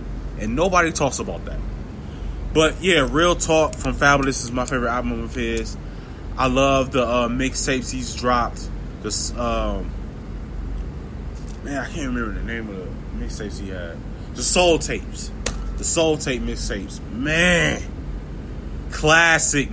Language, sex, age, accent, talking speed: English, male, 20-39, American, 135 wpm